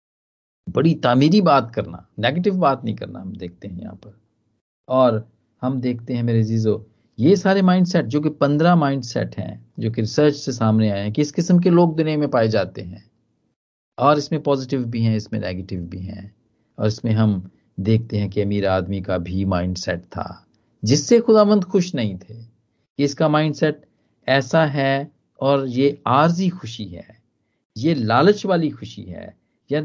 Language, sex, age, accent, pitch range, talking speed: Hindi, male, 50-69, native, 110-165 Hz, 170 wpm